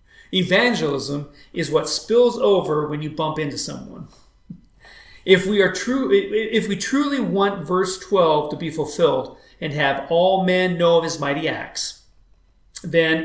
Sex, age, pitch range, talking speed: male, 40-59, 150-190 Hz, 150 wpm